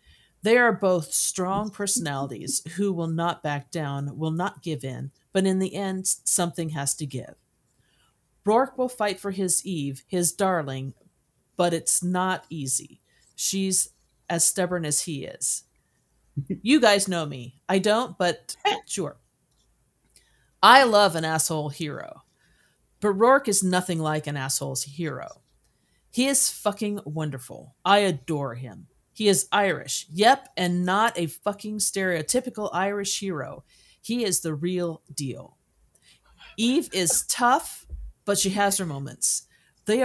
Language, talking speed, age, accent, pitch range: English, 140 wpm, 50-69, American, 155-205 Hz